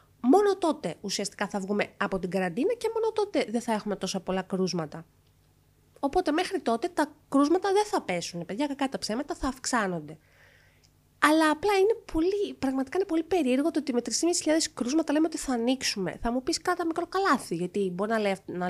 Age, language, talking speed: 20-39, Greek, 180 wpm